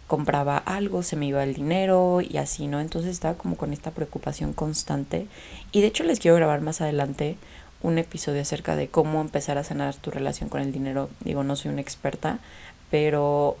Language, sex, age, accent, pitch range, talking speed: Spanish, female, 20-39, Mexican, 140-170 Hz, 195 wpm